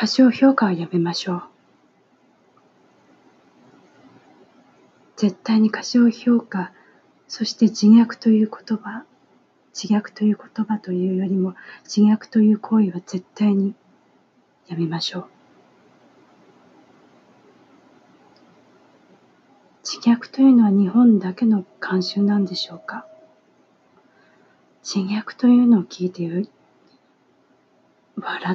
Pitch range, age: 185-235 Hz, 40-59